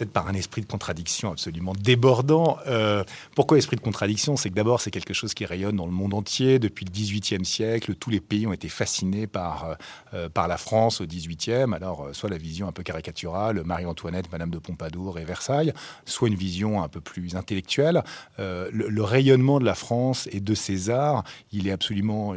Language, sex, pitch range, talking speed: French, male, 95-120 Hz, 200 wpm